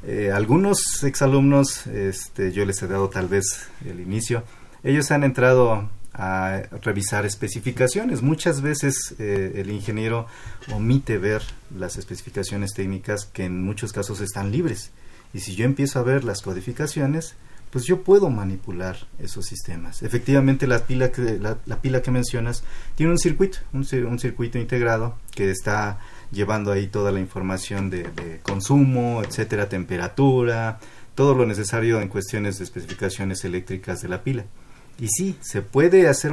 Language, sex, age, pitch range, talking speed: Spanish, male, 40-59, 95-125 Hz, 145 wpm